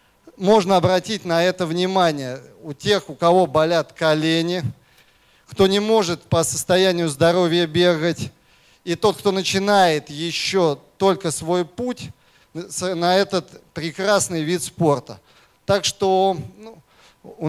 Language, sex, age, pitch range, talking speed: Russian, male, 30-49, 155-190 Hz, 120 wpm